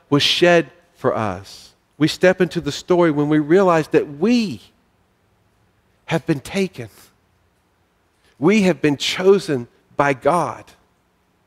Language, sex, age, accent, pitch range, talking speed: English, male, 50-69, American, 95-155 Hz, 120 wpm